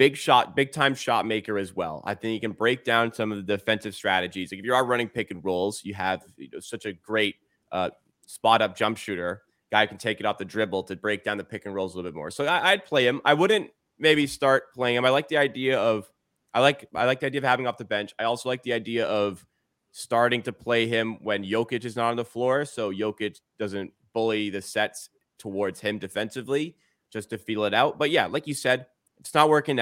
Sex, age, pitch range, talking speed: male, 20-39, 105-130 Hz, 240 wpm